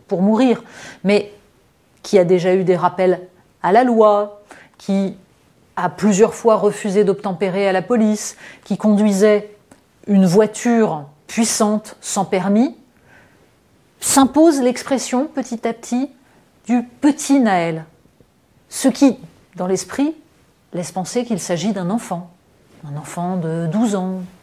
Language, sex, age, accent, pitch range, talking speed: French, female, 30-49, French, 195-255 Hz, 125 wpm